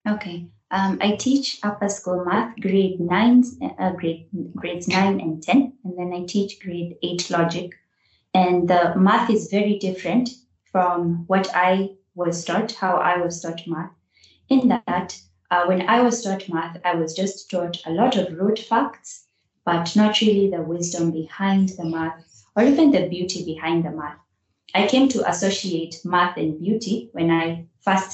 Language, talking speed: English, 170 wpm